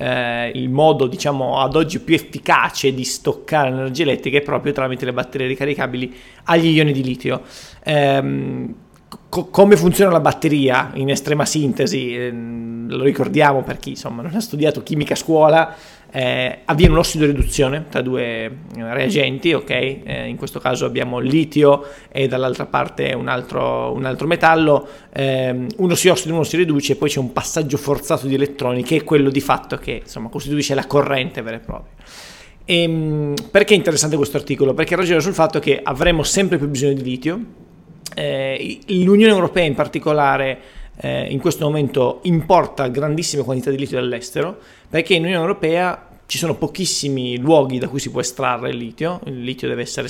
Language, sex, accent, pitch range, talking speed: Italian, male, native, 130-160 Hz, 170 wpm